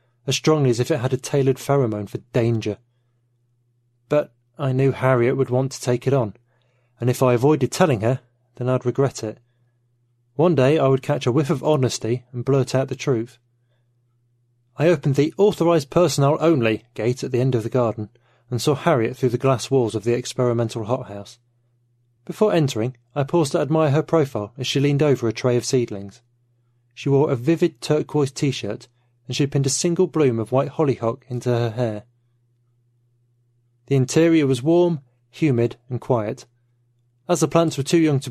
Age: 30-49